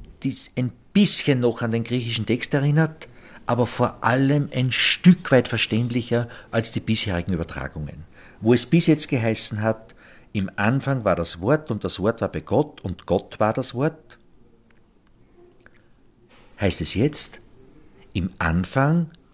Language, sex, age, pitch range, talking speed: German, male, 50-69, 100-135 Hz, 145 wpm